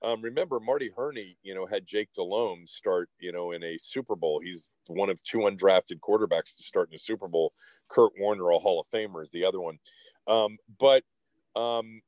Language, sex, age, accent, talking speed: English, male, 40-59, American, 205 wpm